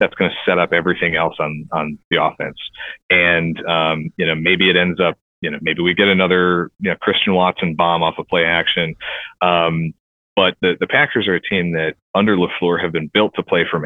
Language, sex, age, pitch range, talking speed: English, male, 30-49, 80-90 Hz, 220 wpm